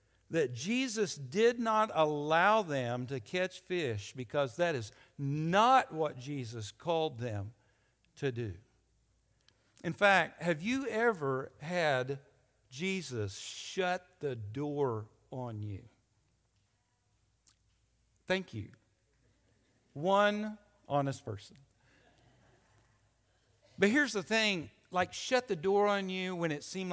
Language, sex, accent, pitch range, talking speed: English, male, American, 115-175 Hz, 110 wpm